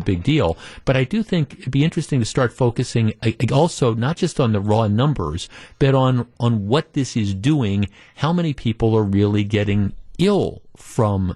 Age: 50-69